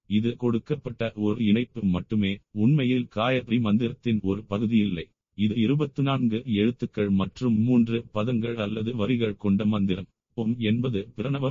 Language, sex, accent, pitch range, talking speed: Tamil, male, native, 105-125 Hz, 120 wpm